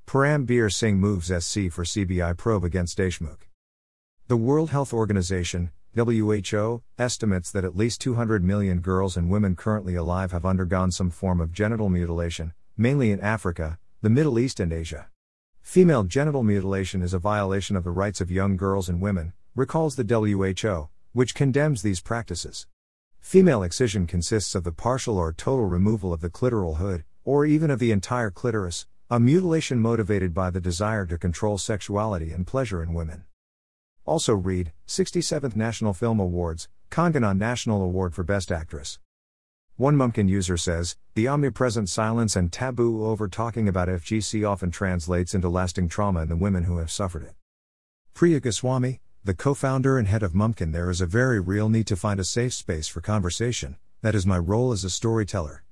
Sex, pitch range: male, 90-115 Hz